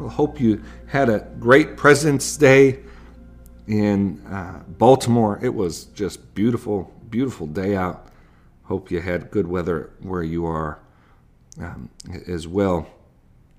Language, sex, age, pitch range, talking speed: English, male, 50-69, 95-125 Hz, 125 wpm